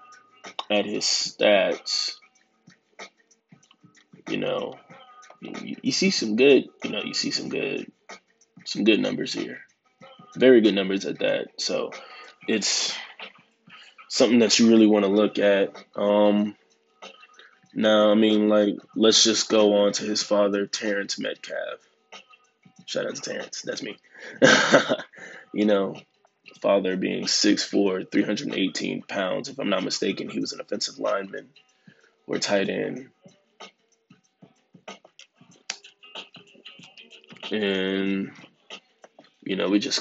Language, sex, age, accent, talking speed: English, male, 20-39, American, 120 wpm